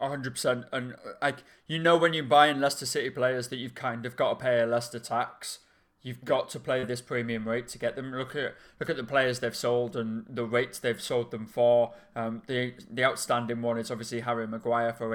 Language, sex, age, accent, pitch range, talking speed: English, male, 20-39, British, 115-130 Hz, 230 wpm